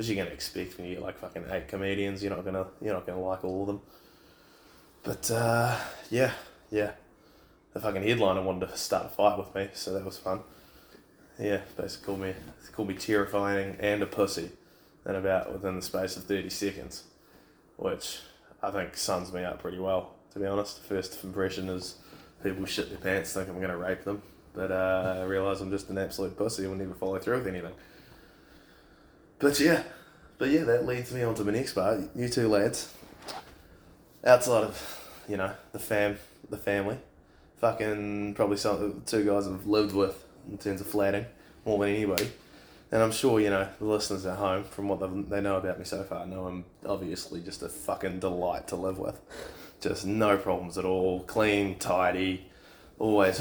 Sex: male